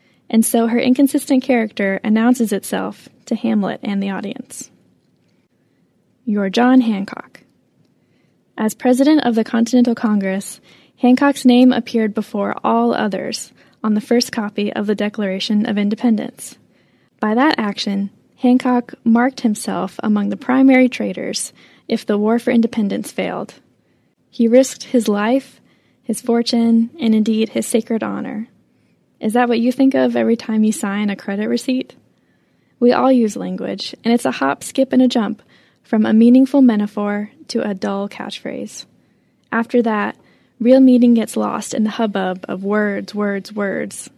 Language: English